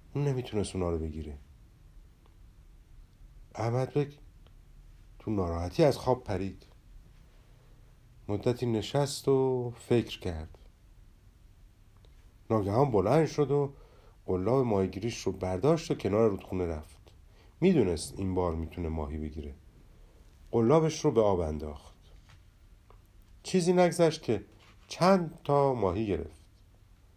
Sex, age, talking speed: male, 50-69, 95 wpm